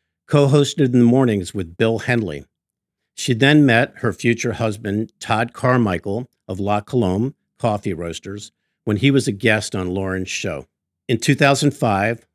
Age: 50-69